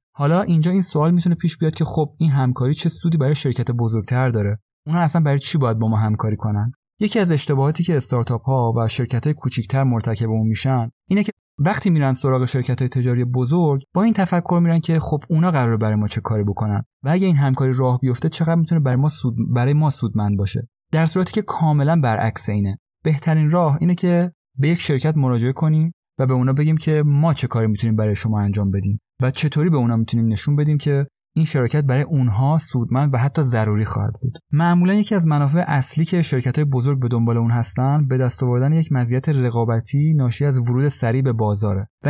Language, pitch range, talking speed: Persian, 120-155 Hz, 210 wpm